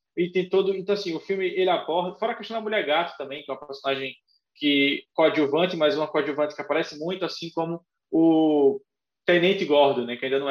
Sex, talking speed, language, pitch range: male, 205 wpm, Portuguese, 150-200 Hz